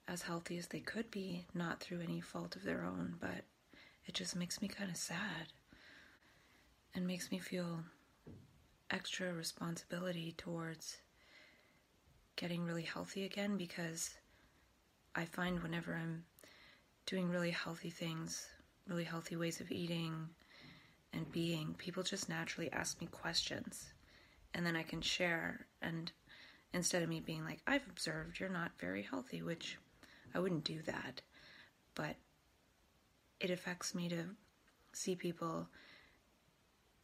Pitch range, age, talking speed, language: 160-185 Hz, 30-49, 135 wpm, English